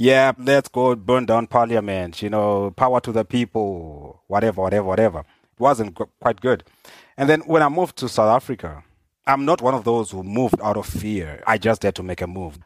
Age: 30-49